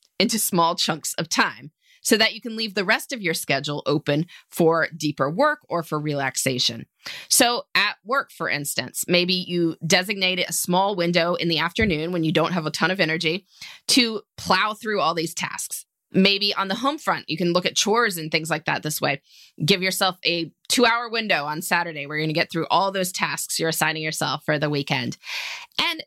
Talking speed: 205 wpm